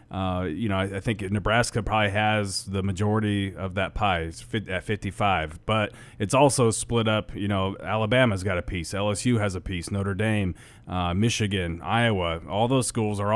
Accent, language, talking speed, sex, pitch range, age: American, English, 180 wpm, male, 95-110 Hz, 30-49